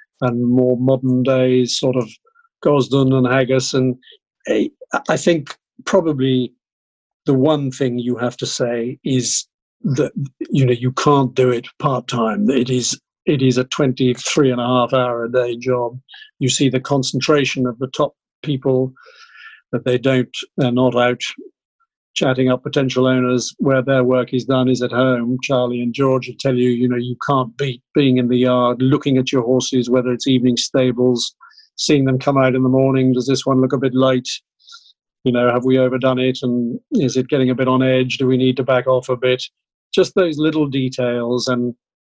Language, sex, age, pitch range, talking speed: English, male, 50-69, 125-140 Hz, 190 wpm